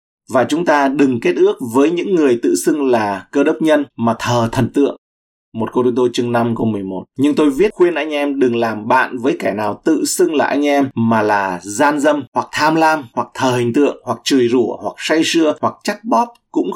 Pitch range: 100-135 Hz